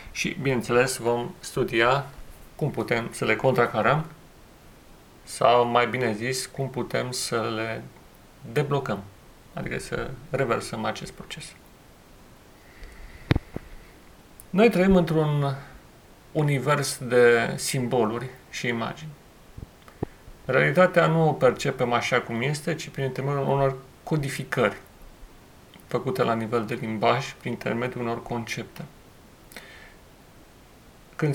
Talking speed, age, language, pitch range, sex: 100 wpm, 40-59, Romanian, 120-145 Hz, male